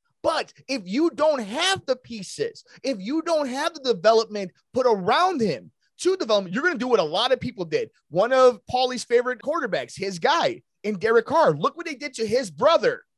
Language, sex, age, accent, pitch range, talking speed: English, male, 30-49, American, 180-275 Hz, 205 wpm